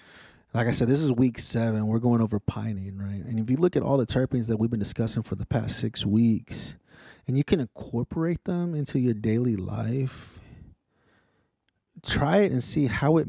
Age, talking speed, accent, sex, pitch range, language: 30-49, 200 wpm, American, male, 105-130 Hz, English